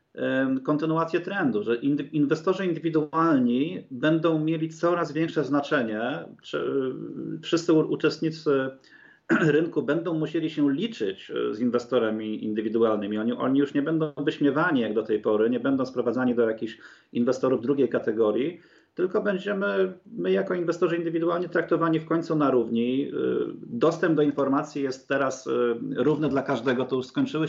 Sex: male